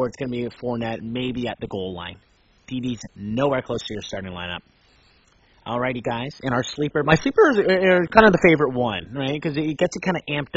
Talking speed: 240 wpm